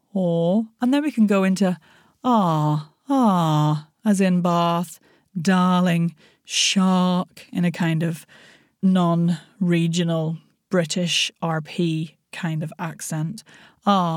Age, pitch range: 30-49, 175-220 Hz